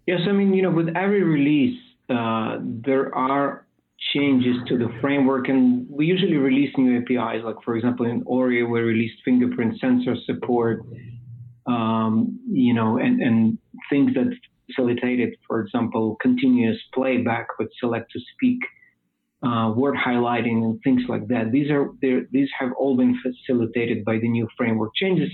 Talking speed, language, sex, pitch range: 160 wpm, English, male, 120-150 Hz